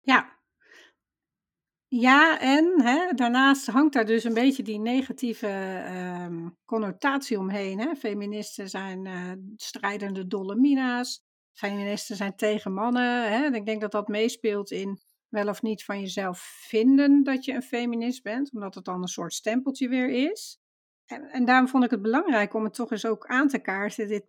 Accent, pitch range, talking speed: Dutch, 205-255 Hz, 170 wpm